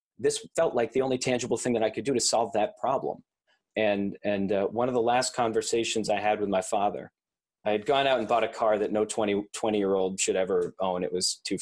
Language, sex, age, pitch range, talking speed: English, male, 30-49, 105-120 Hz, 245 wpm